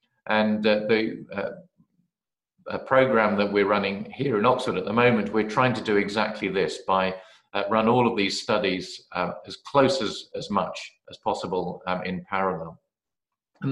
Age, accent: 40-59, British